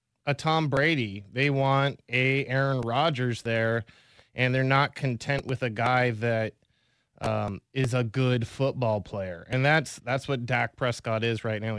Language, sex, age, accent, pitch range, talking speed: English, male, 20-39, American, 115-135 Hz, 165 wpm